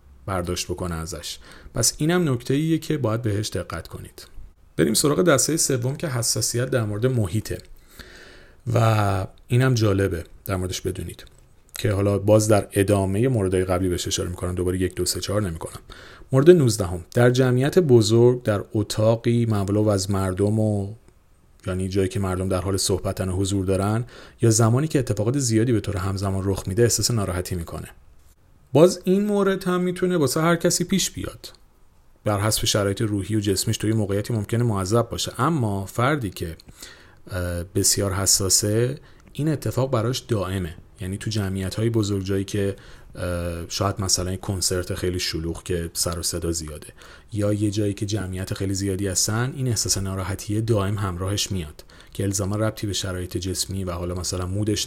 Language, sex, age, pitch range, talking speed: Persian, male, 40-59, 90-115 Hz, 165 wpm